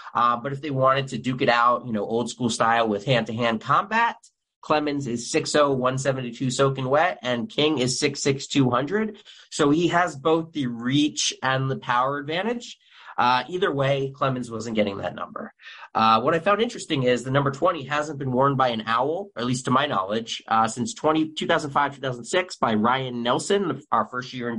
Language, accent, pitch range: English, American, 120-150 Hz